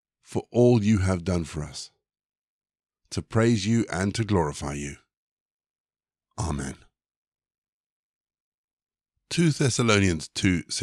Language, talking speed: English, 95 wpm